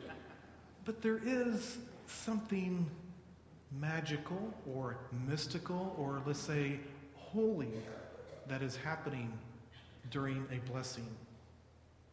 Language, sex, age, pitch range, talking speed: English, male, 40-59, 130-185 Hz, 85 wpm